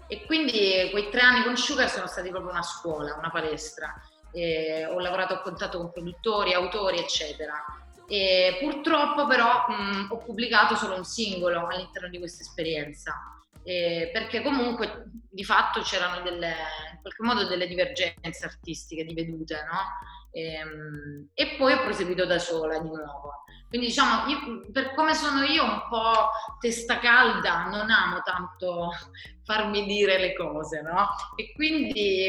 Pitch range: 175-225 Hz